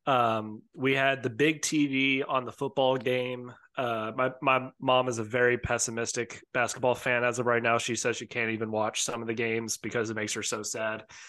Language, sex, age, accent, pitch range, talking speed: English, male, 20-39, American, 115-140 Hz, 215 wpm